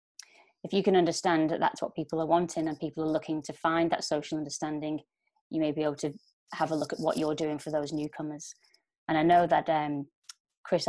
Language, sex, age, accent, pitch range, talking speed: English, female, 20-39, British, 155-180 Hz, 220 wpm